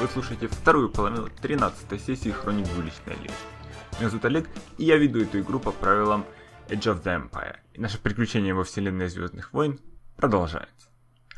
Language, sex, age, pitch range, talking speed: Russian, male, 20-39, 100-120 Hz, 165 wpm